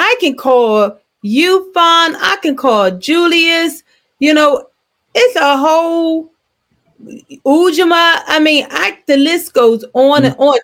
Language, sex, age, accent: English, female, 30-49, American